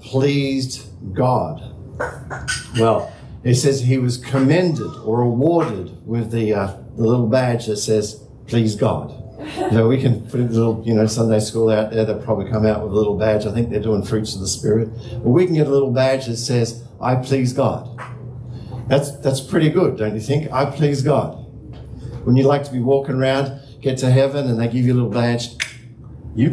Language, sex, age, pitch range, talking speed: English, male, 50-69, 115-145 Hz, 200 wpm